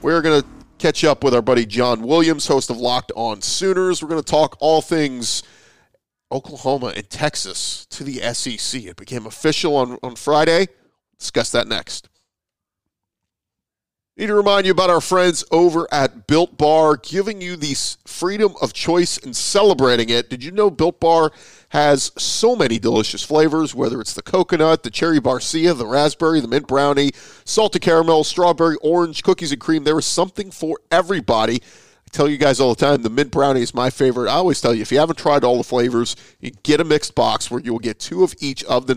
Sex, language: male, English